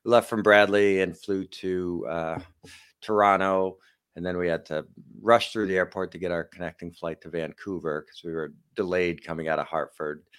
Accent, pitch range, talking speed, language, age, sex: American, 80-100 Hz, 185 wpm, English, 50-69, male